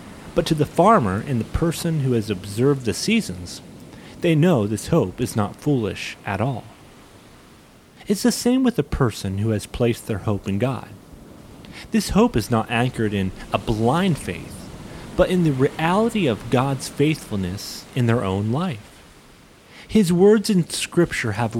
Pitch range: 105-160 Hz